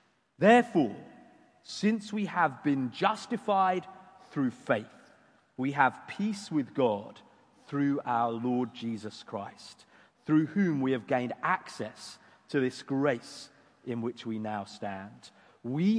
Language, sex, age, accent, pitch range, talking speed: English, male, 40-59, British, 130-190 Hz, 125 wpm